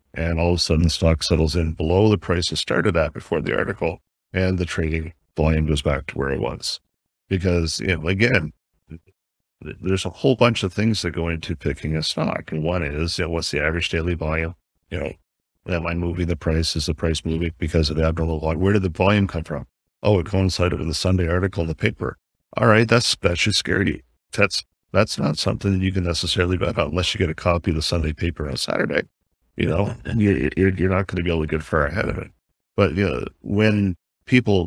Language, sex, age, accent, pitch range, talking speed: English, male, 50-69, American, 80-95 Hz, 230 wpm